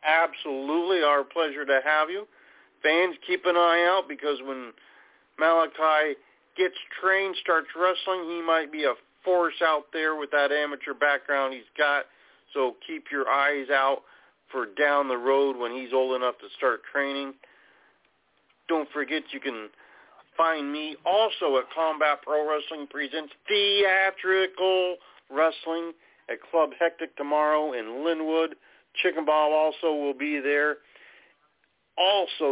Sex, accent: male, American